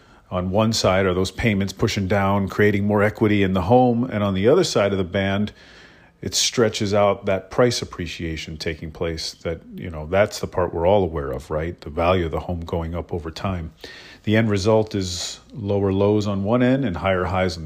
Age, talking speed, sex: 40-59, 215 wpm, male